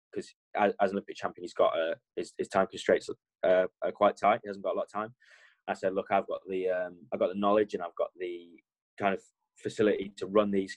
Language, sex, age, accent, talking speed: English, male, 10-29, British, 245 wpm